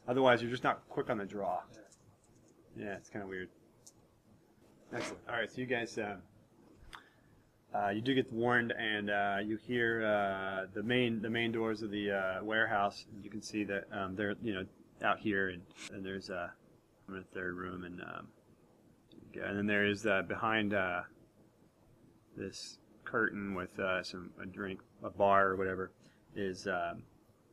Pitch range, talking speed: 100-110 Hz, 170 wpm